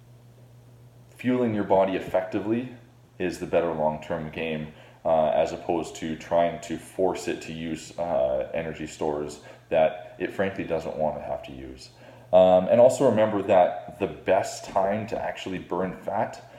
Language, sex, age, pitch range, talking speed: English, male, 20-39, 85-110 Hz, 155 wpm